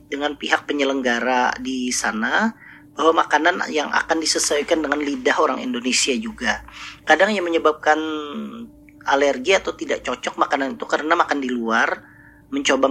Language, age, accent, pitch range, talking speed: Indonesian, 40-59, native, 130-155 Hz, 135 wpm